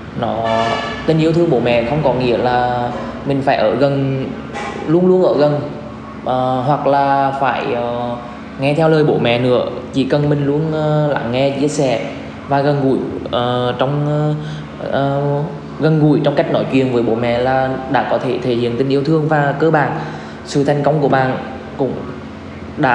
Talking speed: 190 wpm